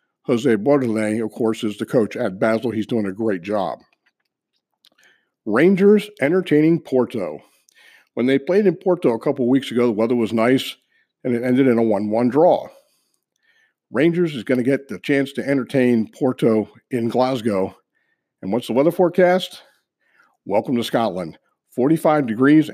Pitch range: 110-155 Hz